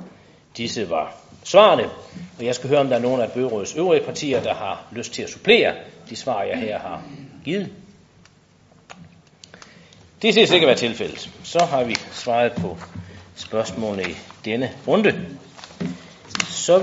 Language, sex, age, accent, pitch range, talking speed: Danish, male, 40-59, native, 110-165 Hz, 155 wpm